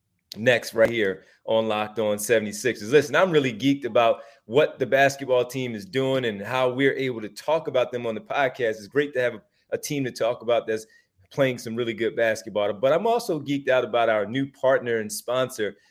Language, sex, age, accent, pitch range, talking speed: English, male, 30-49, American, 120-170 Hz, 205 wpm